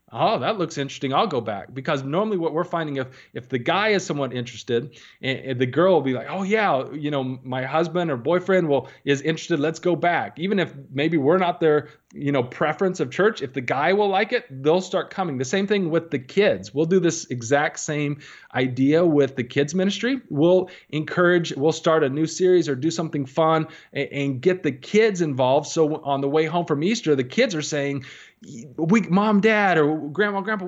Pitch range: 140-185 Hz